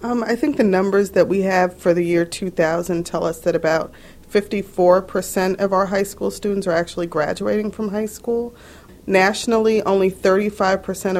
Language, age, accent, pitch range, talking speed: English, 40-59, American, 170-195 Hz, 165 wpm